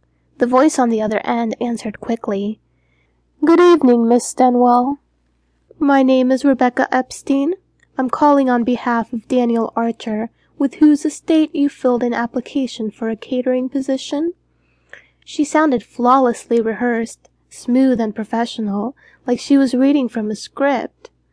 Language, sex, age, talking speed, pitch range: English, female, 20-39, 140 wpm, 225-285 Hz